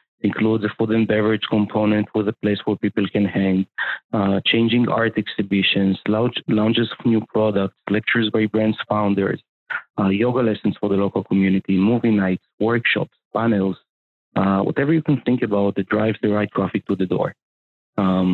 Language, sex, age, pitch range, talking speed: English, male, 30-49, 100-115 Hz, 165 wpm